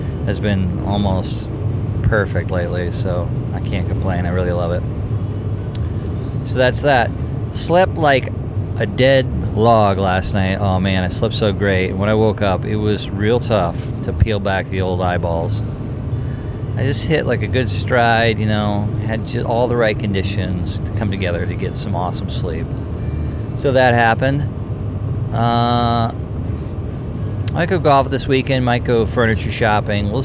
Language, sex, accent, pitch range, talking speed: English, male, American, 100-120 Hz, 155 wpm